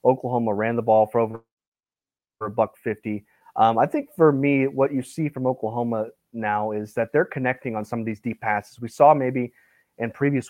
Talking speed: 195 wpm